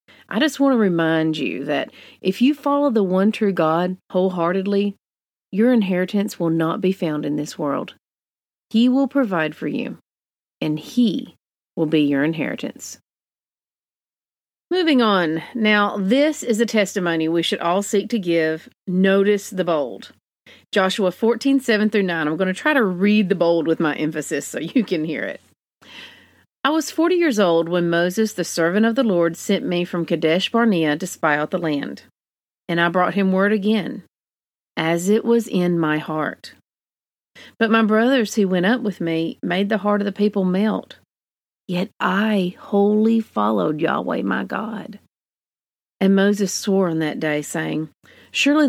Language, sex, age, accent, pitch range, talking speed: English, female, 40-59, American, 170-215 Hz, 170 wpm